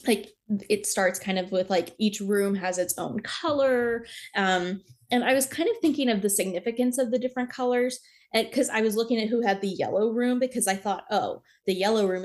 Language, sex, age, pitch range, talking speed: English, female, 20-39, 195-235 Hz, 220 wpm